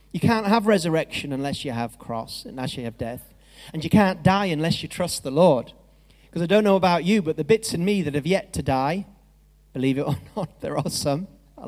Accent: British